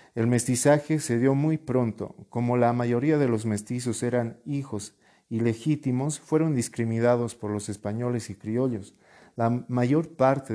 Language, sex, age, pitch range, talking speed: Spanish, male, 50-69, 110-135 Hz, 140 wpm